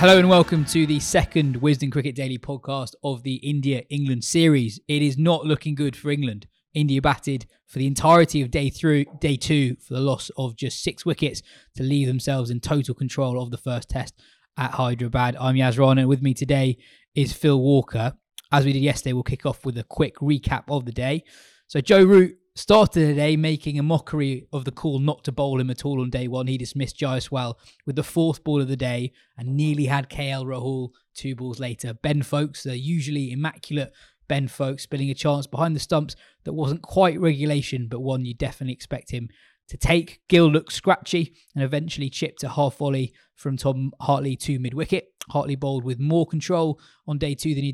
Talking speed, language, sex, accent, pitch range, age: 205 wpm, English, male, British, 130-150 Hz, 20-39